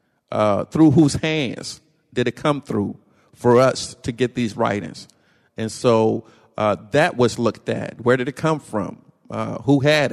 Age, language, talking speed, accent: 50-69, English, 170 wpm, American